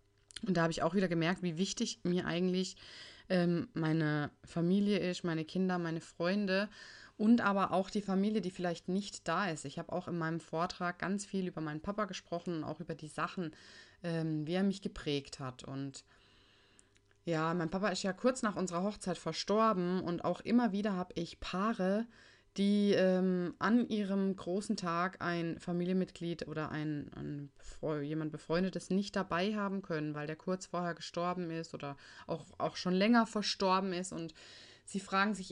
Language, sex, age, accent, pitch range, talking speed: German, female, 20-39, German, 165-200 Hz, 175 wpm